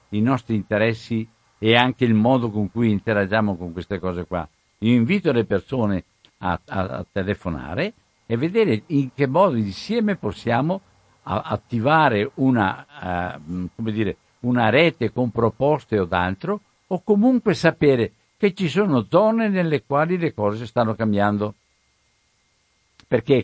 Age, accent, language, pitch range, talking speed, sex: 60-79, native, Italian, 105-140 Hz, 130 wpm, male